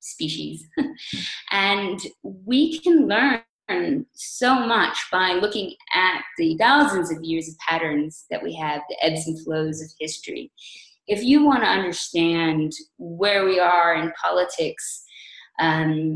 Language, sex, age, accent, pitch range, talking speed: English, female, 20-39, American, 160-235 Hz, 130 wpm